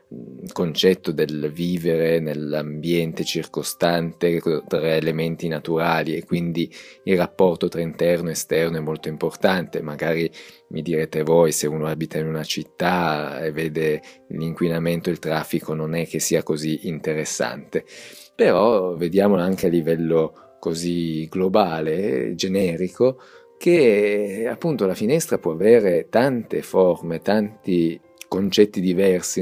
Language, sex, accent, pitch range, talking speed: Italian, male, native, 80-100 Hz, 125 wpm